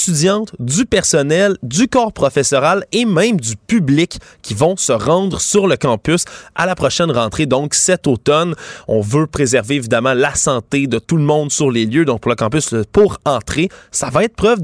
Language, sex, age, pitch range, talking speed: French, male, 20-39, 115-170 Hz, 190 wpm